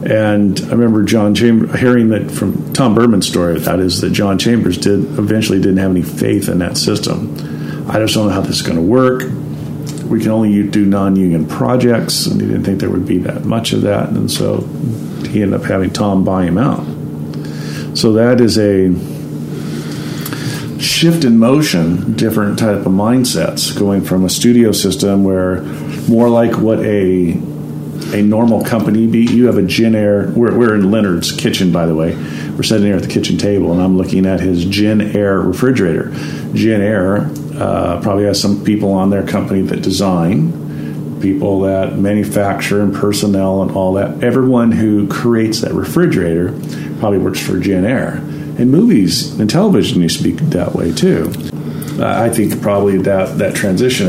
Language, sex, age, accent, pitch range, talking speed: English, male, 50-69, American, 90-110 Hz, 175 wpm